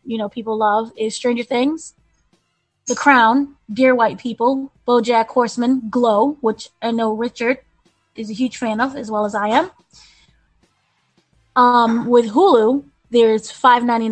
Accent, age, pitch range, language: American, 20-39, 225-255 Hz, English